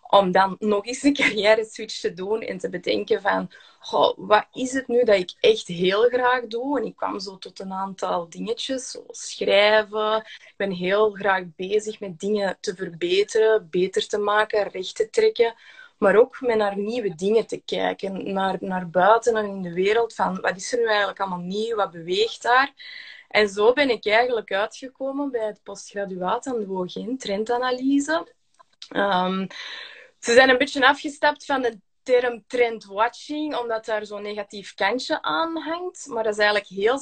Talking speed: 175 wpm